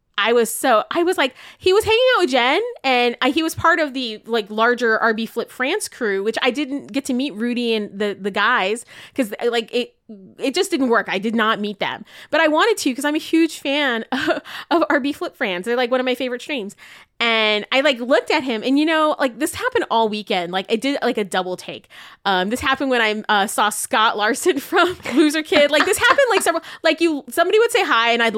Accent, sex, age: American, female, 20-39